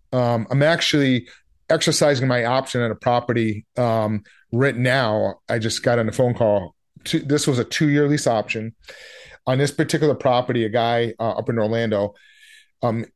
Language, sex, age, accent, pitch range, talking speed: English, male, 30-49, American, 105-130 Hz, 165 wpm